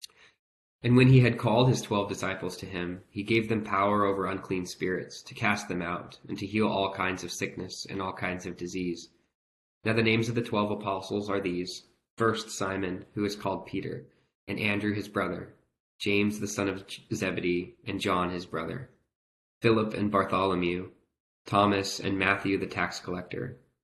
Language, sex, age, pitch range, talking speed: English, male, 20-39, 90-105 Hz, 175 wpm